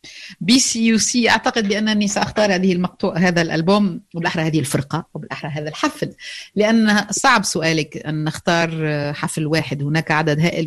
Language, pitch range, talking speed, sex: Arabic, 155-190 Hz, 145 wpm, female